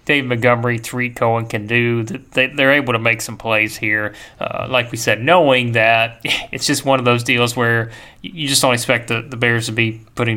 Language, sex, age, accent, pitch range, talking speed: English, male, 30-49, American, 115-145 Hz, 210 wpm